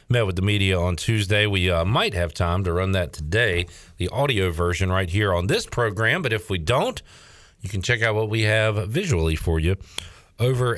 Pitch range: 90-120 Hz